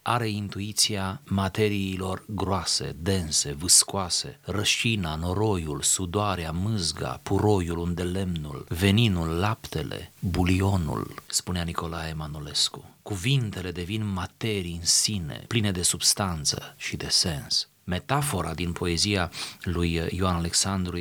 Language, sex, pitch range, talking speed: Romanian, male, 90-110 Hz, 105 wpm